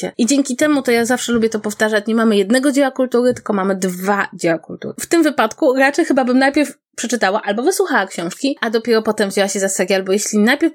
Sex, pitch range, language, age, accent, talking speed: female, 200-260 Hz, Polish, 20-39, native, 225 wpm